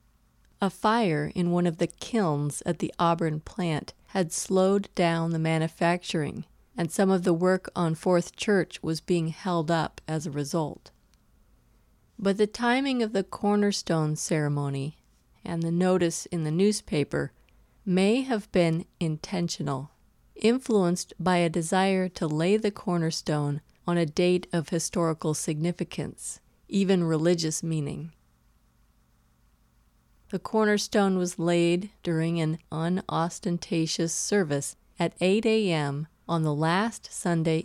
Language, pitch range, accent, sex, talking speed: English, 155-190 Hz, American, female, 130 wpm